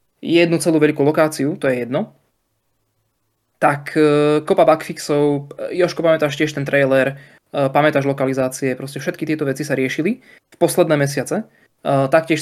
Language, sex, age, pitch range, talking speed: Slovak, male, 20-39, 135-165 Hz, 145 wpm